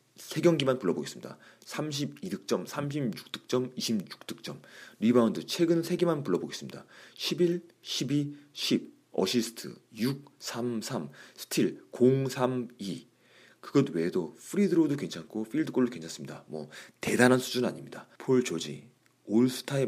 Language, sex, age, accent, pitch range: Korean, male, 30-49, native, 110-145 Hz